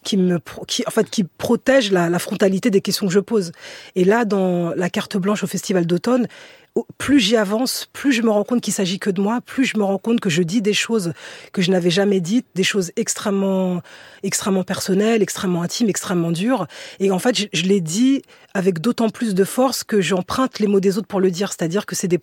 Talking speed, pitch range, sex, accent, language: 230 wpm, 180-220 Hz, female, French, French